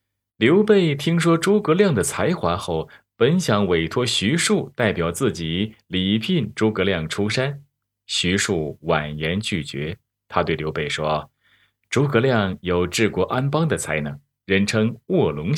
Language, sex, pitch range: Chinese, male, 85-125 Hz